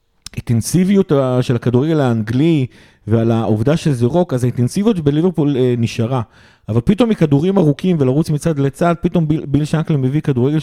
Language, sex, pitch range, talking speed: Hebrew, male, 125-165 Hz, 135 wpm